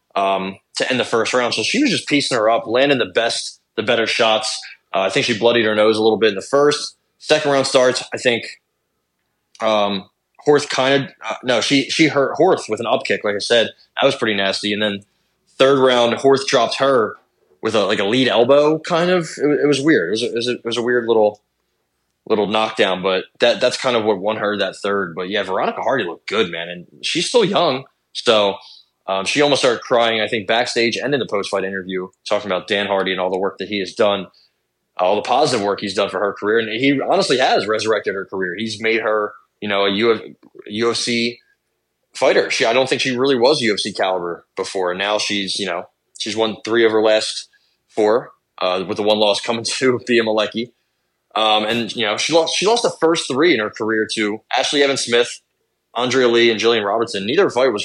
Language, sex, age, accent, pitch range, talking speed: English, male, 20-39, American, 100-130 Hz, 225 wpm